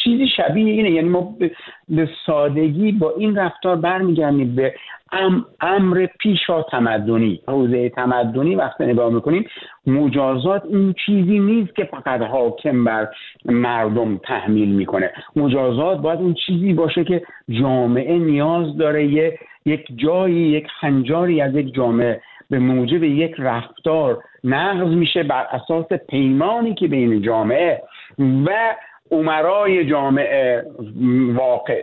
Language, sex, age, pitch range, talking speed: Persian, male, 60-79, 125-175 Hz, 120 wpm